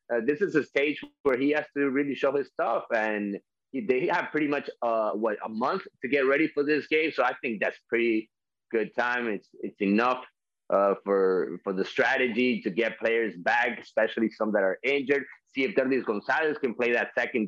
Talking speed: 210 wpm